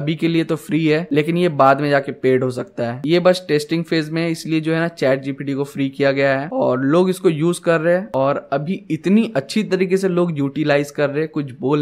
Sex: male